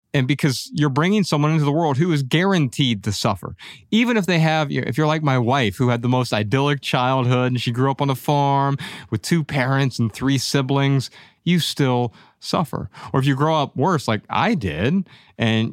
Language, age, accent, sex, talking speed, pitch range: English, 30-49, American, male, 205 wpm, 120-155 Hz